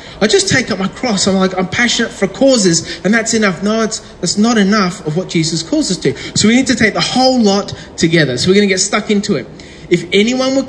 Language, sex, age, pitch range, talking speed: English, male, 30-49, 165-220 Hz, 260 wpm